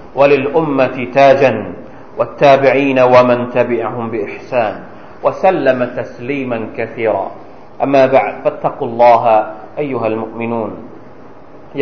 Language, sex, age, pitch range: Thai, male, 40-59, 125-165 Hz